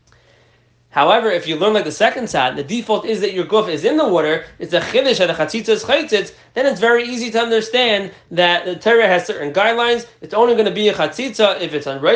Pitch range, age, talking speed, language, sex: 175-225 Hz, 20-39, 235 wpm, English, male